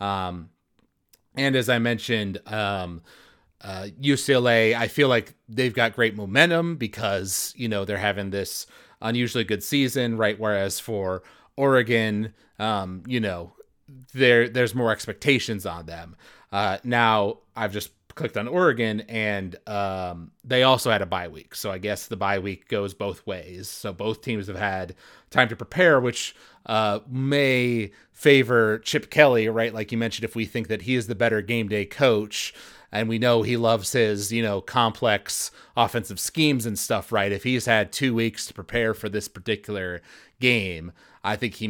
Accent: American